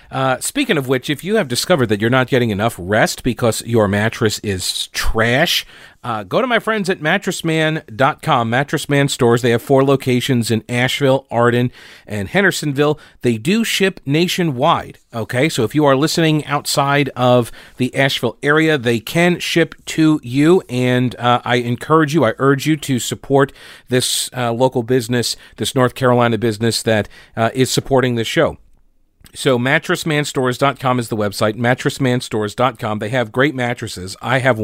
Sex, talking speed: male, 160 wpm